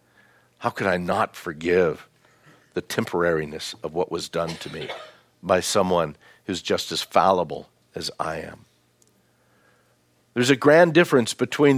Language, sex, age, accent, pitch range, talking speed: English, male, 60-79, American, 100-140 Hz, 140 wpm